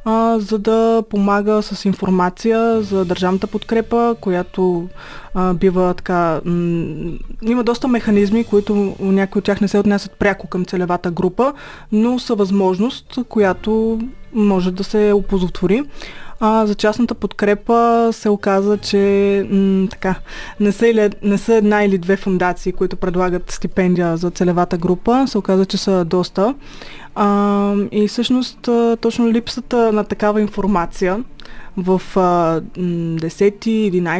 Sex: female